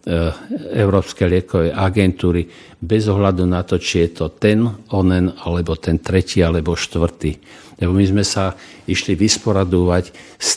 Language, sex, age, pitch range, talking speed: Slovak, male, 60-79, 90-100 Hz, 135 wpm